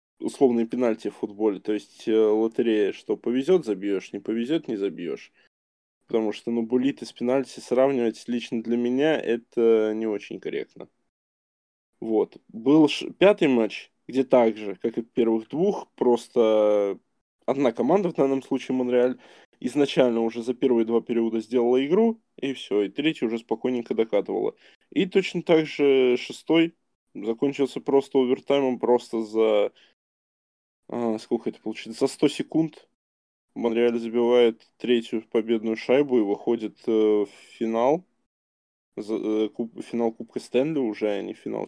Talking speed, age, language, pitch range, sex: 140 wpm, 20-39, Russian, 110-135 Hz, male